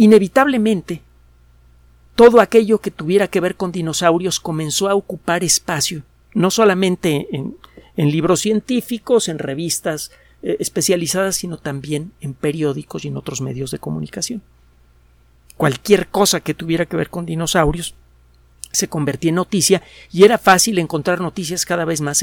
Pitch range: 140-190 Hz